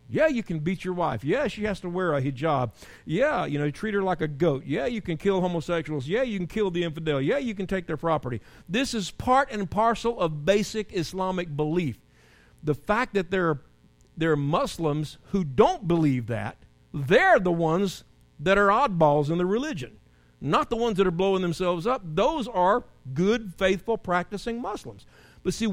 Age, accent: 50-69, American